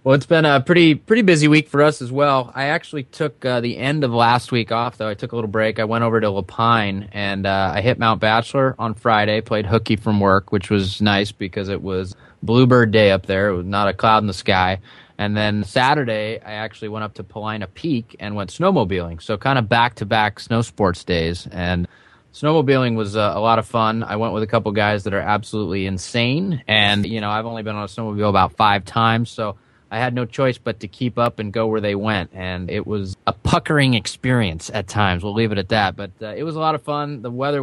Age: 20-39